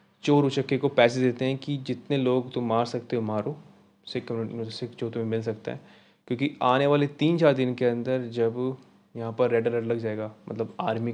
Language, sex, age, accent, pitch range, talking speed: Hindi, male, 20-39, native, 115-130 Hz, 205 wpm